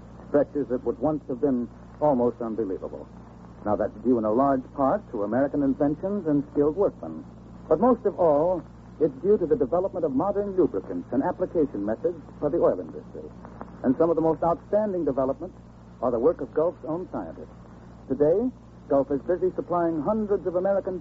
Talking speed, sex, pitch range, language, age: 175 wpm, male, 120-185 Hz, English, 60-79